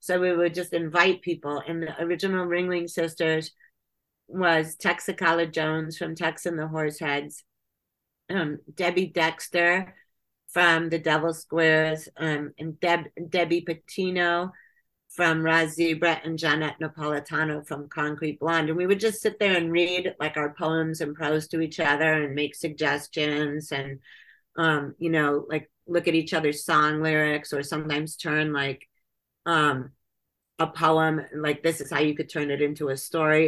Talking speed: 160 wpm